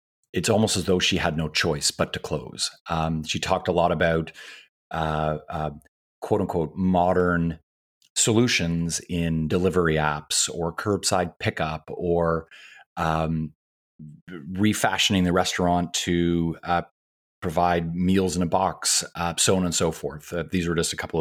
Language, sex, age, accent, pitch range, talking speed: English, male, 30-49, American, 80-95 Hz, 150 wpm